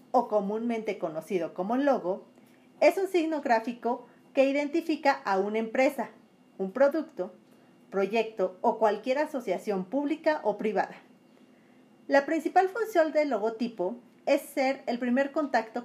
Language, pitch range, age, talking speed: Spanish, 220-285 Hz, 40-59, 125 wpm